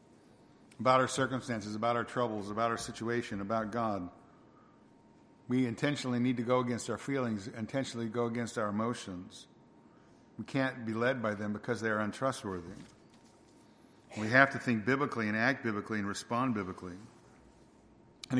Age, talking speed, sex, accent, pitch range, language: 50-69, 150 wpm, male, American, 110-125 Hz, English